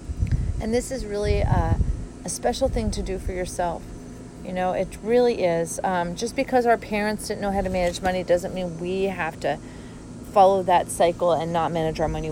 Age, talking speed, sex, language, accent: 40-59, 200 wpm, female, English, American